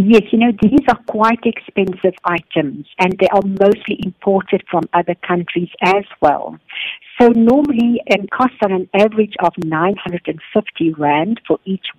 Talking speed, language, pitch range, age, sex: 150 wpm, English, 175-220 Hz, 60-79, female